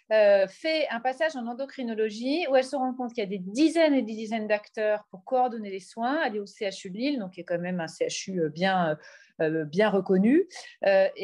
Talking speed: 225 wpm